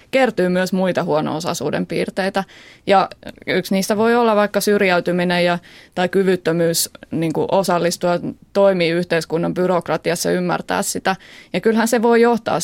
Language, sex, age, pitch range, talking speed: Finnish, female, 20-39, 170-195 Hz, 135 wpm